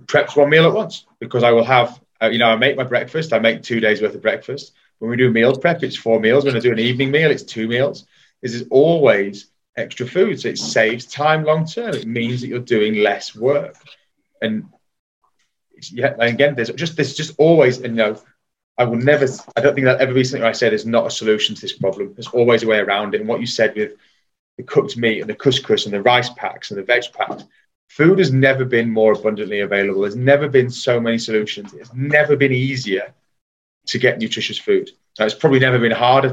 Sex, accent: male, British